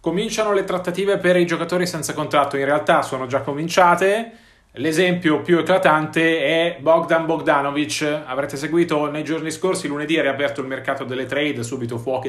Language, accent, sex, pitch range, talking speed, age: Italian, native, male, 140-175 Hz, 160 wpm, 30-49